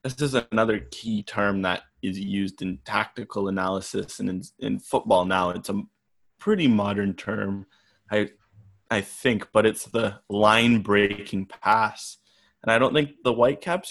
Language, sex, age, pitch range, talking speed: English, male, 20-39, 100-110 Hz, 160 wpm